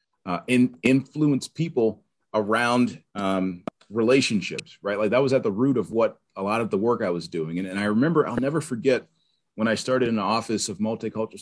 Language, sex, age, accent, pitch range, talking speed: English, male, 30-49, American, 95-120 Hz, 205 wpm